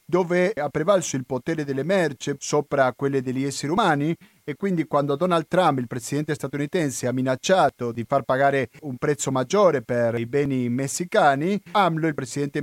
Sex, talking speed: male, 165 wpm